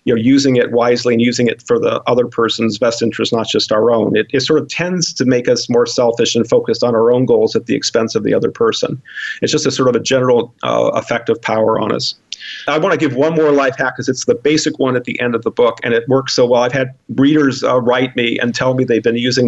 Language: English